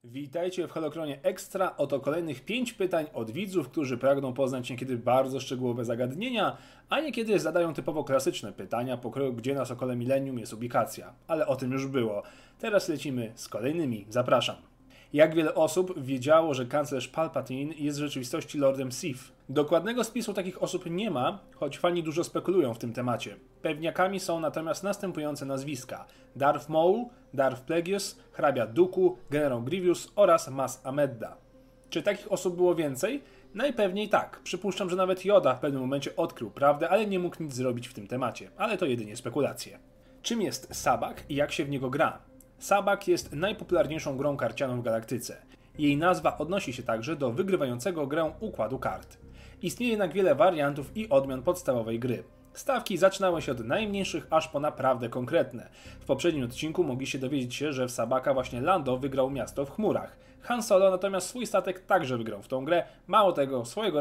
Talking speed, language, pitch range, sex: 170 wpm, Polish, 130-180 Hz, male